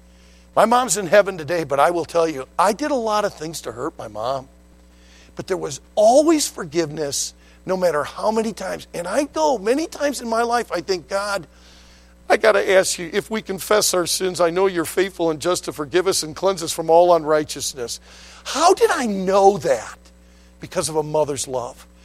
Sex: male